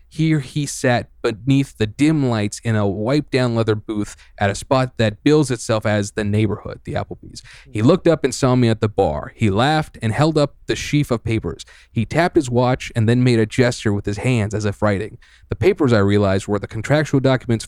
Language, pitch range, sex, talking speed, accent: English, 105-135 Hz, male, 220 wpm, American